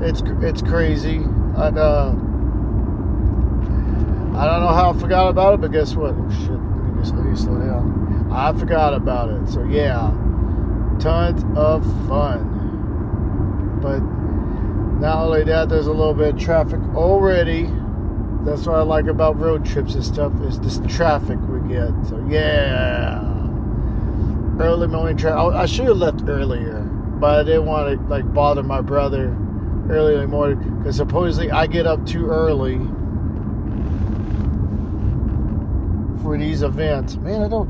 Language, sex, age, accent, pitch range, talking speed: English, male, 40-59, American, 85-115 Hz, 150 wpm